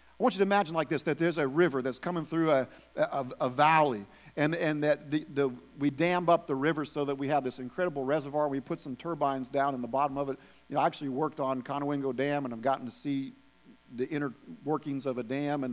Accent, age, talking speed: American, 50-69, 250 wpm